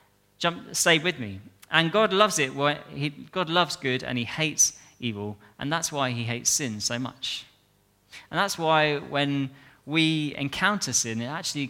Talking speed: 170 wpm